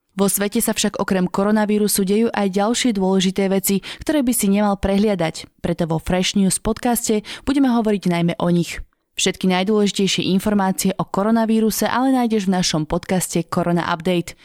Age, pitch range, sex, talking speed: 20-39, 175-210 Hz, female, 160 wpm